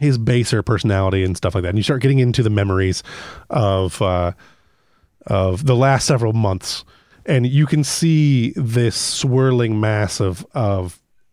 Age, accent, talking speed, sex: 30-49, American, 160 wpm, male